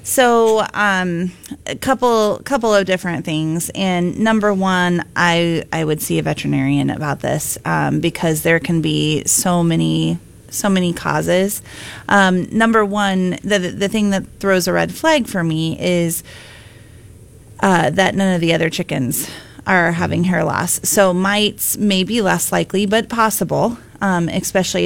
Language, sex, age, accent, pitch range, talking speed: English, female, 30-49, American, 155-190 Hz, 155 wpm